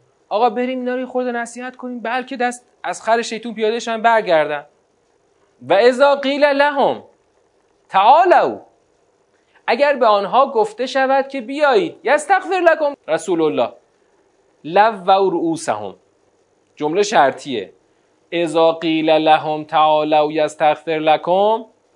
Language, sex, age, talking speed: Persian, male, 40-59, 115 wpm